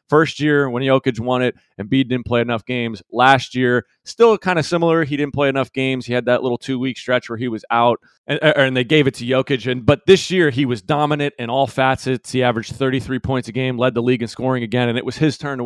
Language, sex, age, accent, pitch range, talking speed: English, male, 30-49, American, 120-155 Hz, 255 wpm